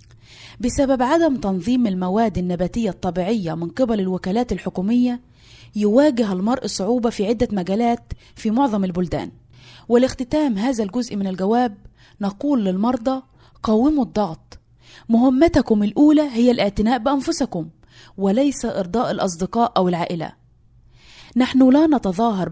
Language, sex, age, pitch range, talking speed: Arabic, female, 20-39, 185-250 Hz, 110 wpm